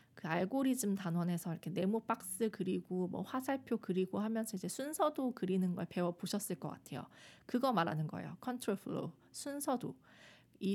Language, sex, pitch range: Korean, female, 185-245 Hz